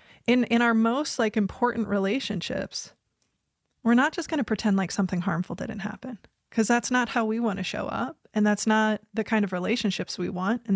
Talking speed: 195 wpm